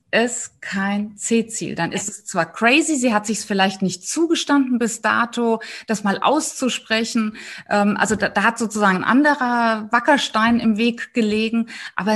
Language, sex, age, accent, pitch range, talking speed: German, female, 20-39, German, 195-245 Hz, 160 wpm